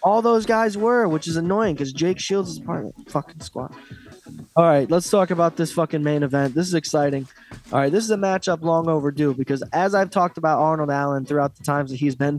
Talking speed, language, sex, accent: 235 wpm, English, male, American